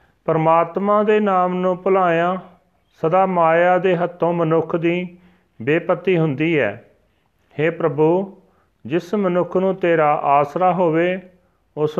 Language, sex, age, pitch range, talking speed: Punjabi, male, 40-59, 145-175 Hz, 115 wpm